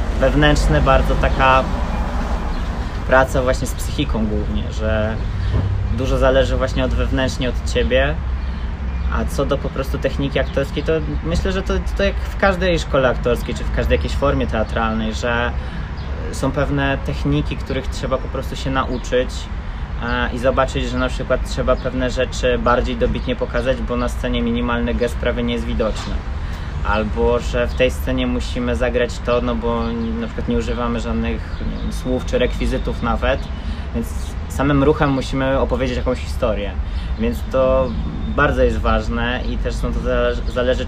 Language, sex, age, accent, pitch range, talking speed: Polish, male, 20-39, native, 75-125 Hz, 150 wpm